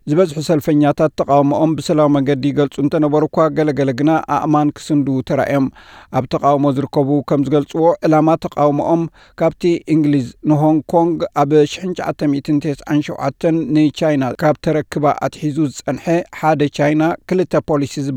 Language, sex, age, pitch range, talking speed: Amharic, male, 60-79, 140-160 Hz, 120 wpm